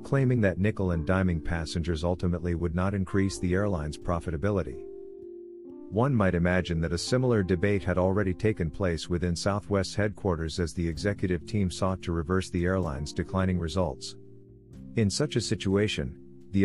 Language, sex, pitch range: English, male, 85-105 Hz